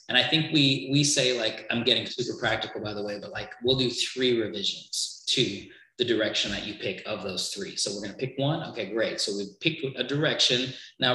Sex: male